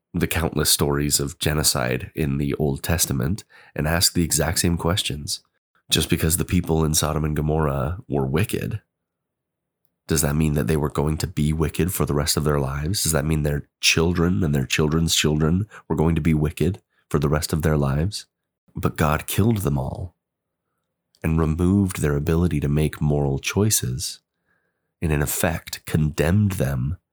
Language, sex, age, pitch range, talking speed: English, male, 30-49, 75-85 Hz, 175 wpm